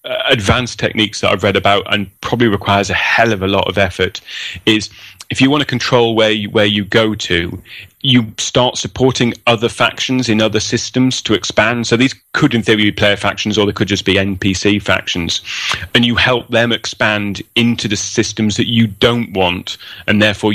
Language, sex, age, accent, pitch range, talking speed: English, male, 30-49, British, 100-115 Hz, 195 wpm